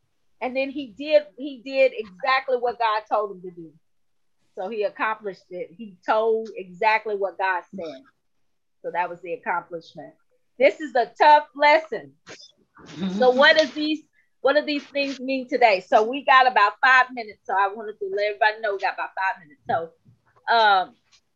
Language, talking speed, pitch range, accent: English, 175 wpm, 210-285 Hz, American